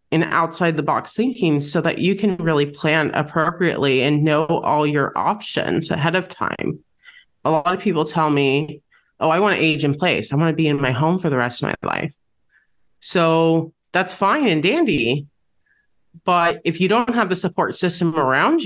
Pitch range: 160-210 Hz